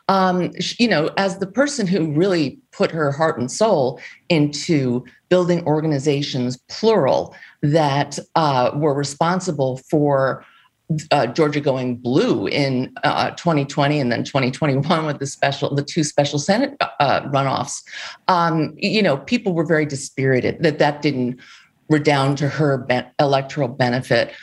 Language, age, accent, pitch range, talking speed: English, 50-69, American, 140-195 Hz, 140 wpm